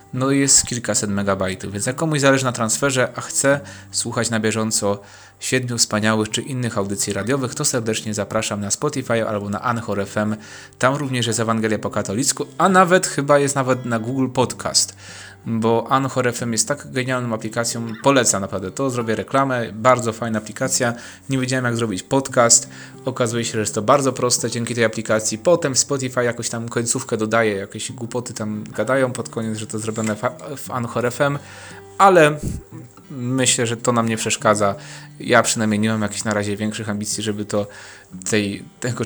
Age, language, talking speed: 30-49, Polish, 175 wpm